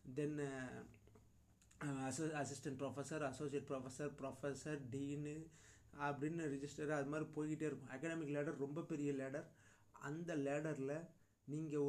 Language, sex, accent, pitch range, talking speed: Tamil, male, native, 130-150 Hz, 110 wpm